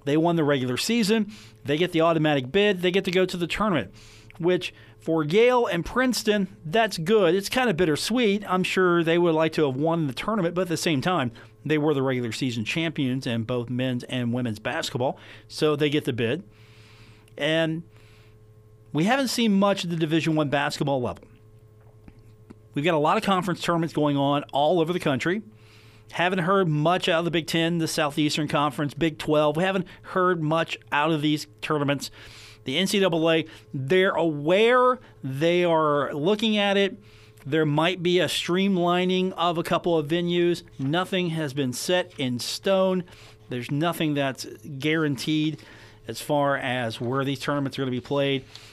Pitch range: 125-175 Hz